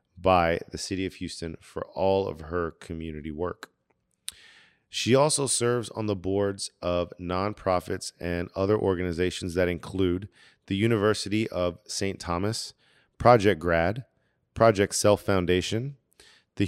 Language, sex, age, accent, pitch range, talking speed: English, male, 40-59, American, 90-105 Hz, 125 wpm